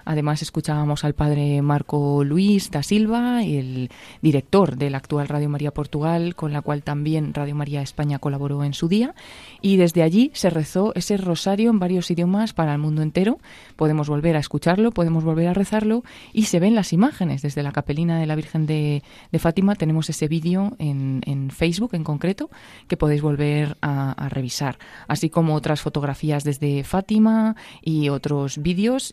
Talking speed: 175 wpm